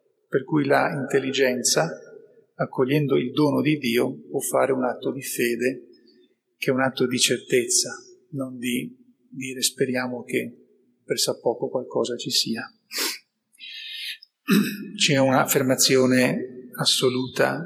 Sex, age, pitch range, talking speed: male, 40-59, 130-215 Hz, 115 wpm